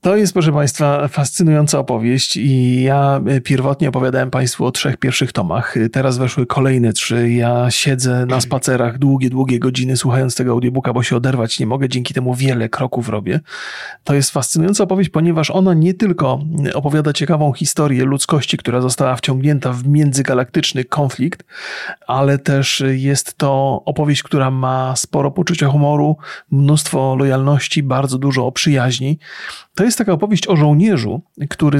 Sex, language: male, Polish